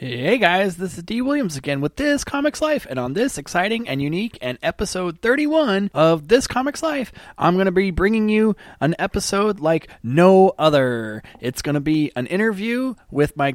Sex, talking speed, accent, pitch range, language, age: male, 190 wpm, American, 125-190 Hz, English, 30-49